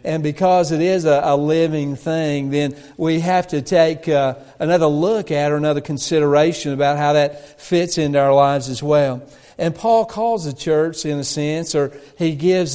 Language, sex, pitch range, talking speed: English, male, 150-180 Hz, 190 wpm